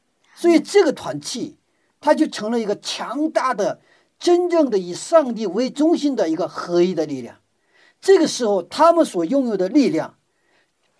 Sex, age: male, 50-69